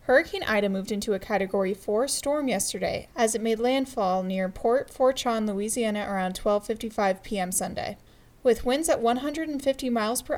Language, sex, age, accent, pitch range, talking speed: English, female, 10-29, American, 210-255 Hz, 155 wpm